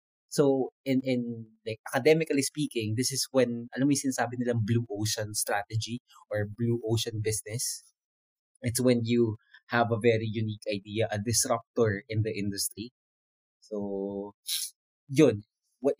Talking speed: 135 wpm